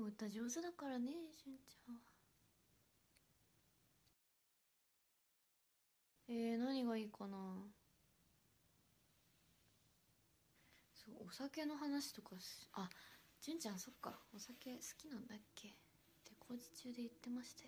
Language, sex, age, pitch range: Japanese, female, 20-39, 205-245 Hz